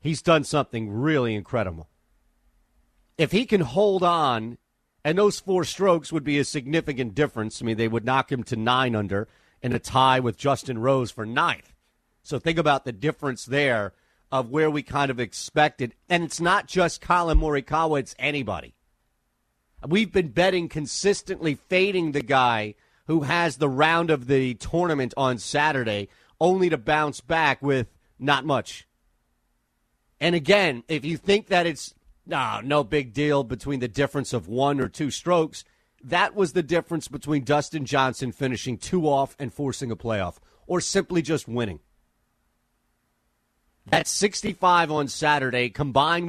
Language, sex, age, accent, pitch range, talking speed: English, male, 40-59, American, 125-165 Hz, 155 wpm